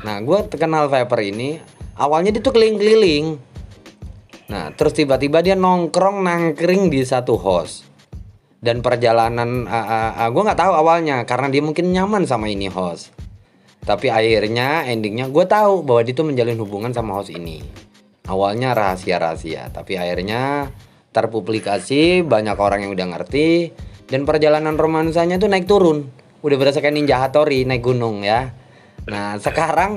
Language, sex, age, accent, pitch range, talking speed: Indonesian, male, 20-39, native, 110-160 Hz, 145 wpm